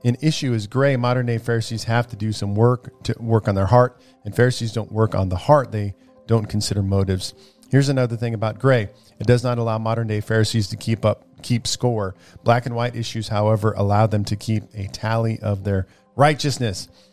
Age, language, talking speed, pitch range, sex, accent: 40-59, English, 205 wpm, 110-130 Hz, male, American